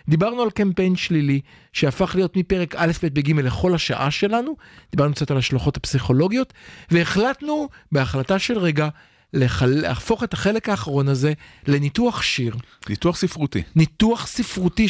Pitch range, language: 125-195 Hz, Hebrew